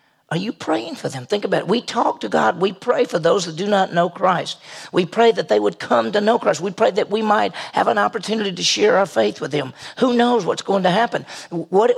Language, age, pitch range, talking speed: English, 50-69, 170-215 Hz, 255 wpm